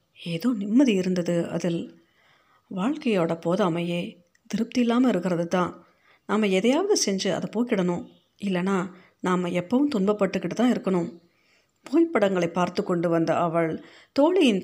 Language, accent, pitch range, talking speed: Tamil, native, 175-220 Hz, 105 wpm